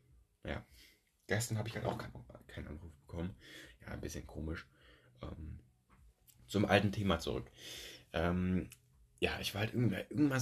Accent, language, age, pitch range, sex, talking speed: German, German, 30-49, 85-110 Hz, male, 145 wpm